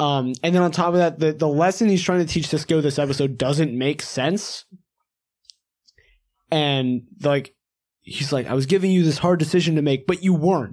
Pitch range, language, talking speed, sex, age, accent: 130-165 Hz, English, 200 wpm, male, 20-39, American